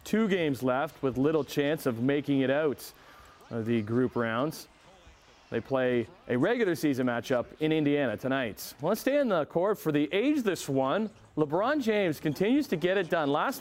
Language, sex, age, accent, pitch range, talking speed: English, male, 40-59, American, 125-185 Hz, 185 wpm